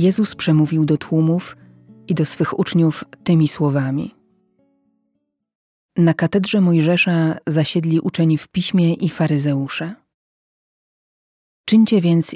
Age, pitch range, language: 40-59, 145-175 Hz, Polish